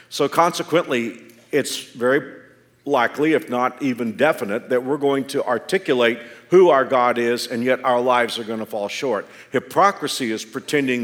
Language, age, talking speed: English, 50-69, 165 wpm